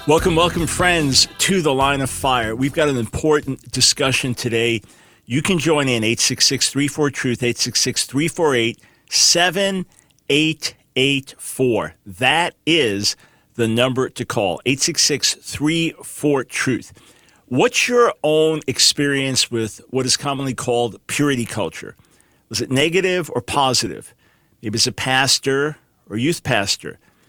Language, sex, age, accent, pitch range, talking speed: English, male, 50-69, American, 125-155 Hz, 110 wpm